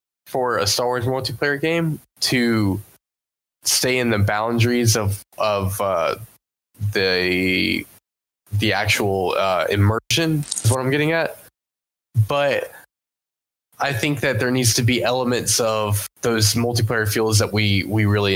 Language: English